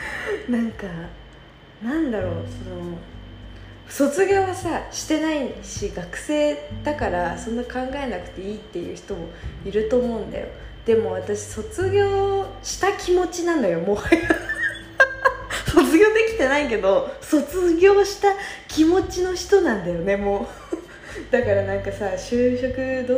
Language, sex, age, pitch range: Japanese, female, 20-39, 180-280 Hz